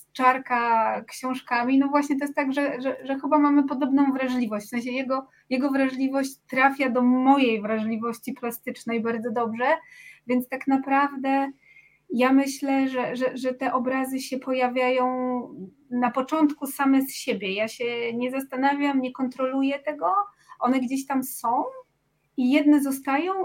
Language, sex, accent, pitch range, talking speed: Polish, female, native, 230-275 Hz, 145 wpm